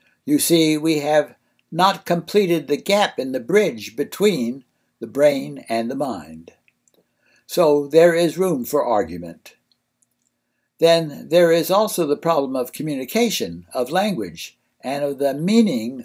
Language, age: English, 60-79